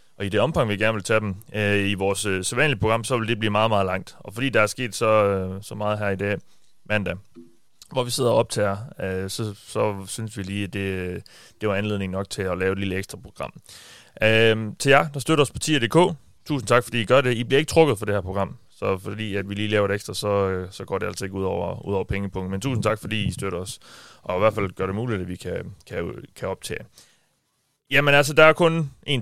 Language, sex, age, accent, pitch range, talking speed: Danish, male, 30-49, native, 100-120 Hz, 260 wpm